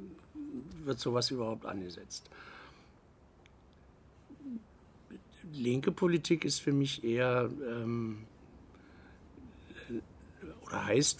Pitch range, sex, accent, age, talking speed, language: 105-120 Hz, male, German, 60-79, 70 wpm, German